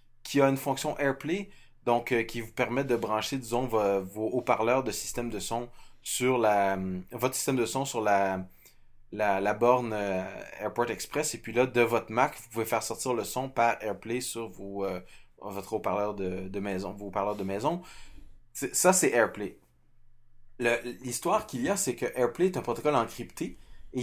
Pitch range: 100-125 Hz